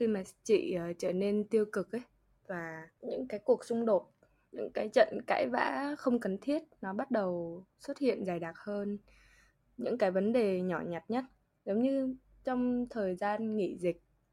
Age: 10-29